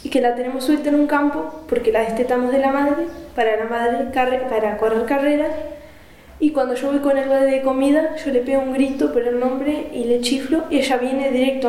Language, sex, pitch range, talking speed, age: Portuguese, female, 230-275 Hz, 225 wpm, 10-29